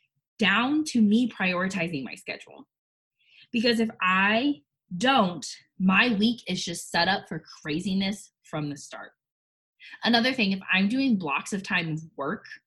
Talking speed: 140 wpm